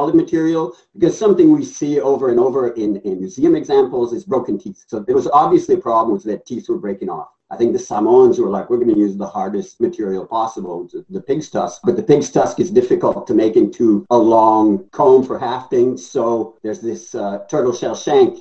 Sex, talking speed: male, 210 wpm